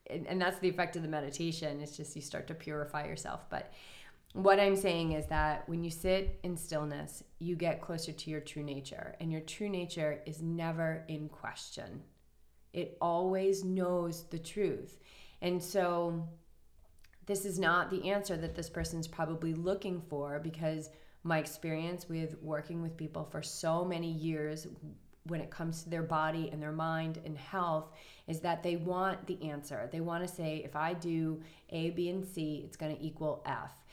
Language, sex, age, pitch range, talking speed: English, female, 30-49, 155-180 Hz, 180 wpm